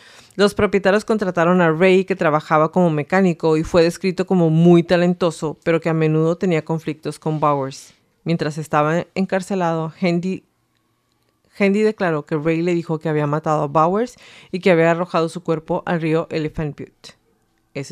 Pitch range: 155-180 Hz